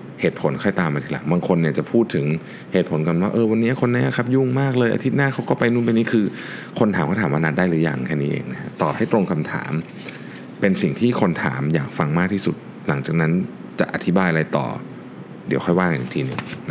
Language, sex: Thai, male